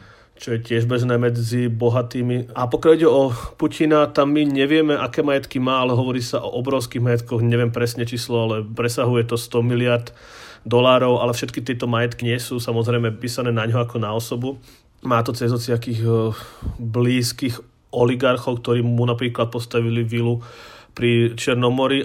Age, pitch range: 30-49, 115-125 Hz